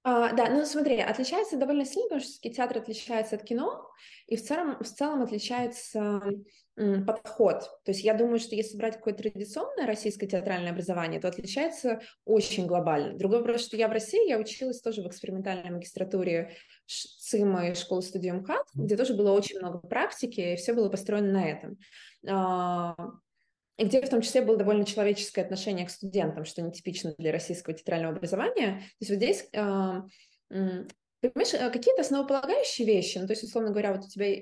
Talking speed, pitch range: 170 wpm, 190-235 Hz